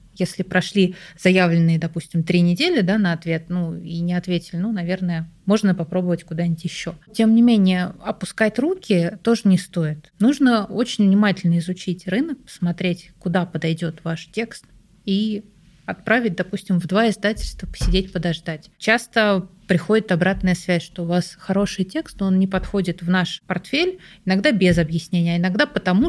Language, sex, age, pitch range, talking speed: Russian, female, 30-49, 175-215 Hz, 150 wpm